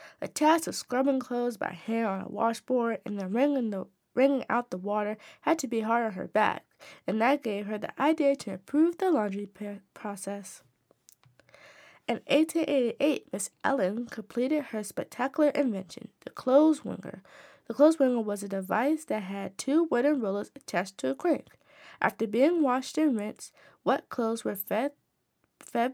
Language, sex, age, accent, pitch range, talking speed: English, female, 20-39, American, 215-285 Hz, 165 wpm